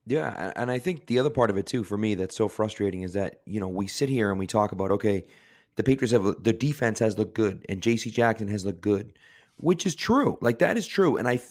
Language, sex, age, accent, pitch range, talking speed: English, male, 30-49, American, 110-145 Hz, 260 wpm